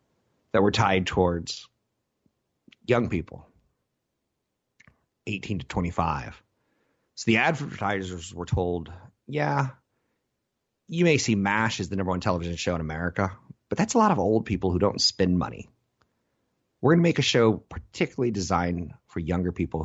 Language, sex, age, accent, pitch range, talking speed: English, male, 30-49, American, 85-110 Hz, 145 wpm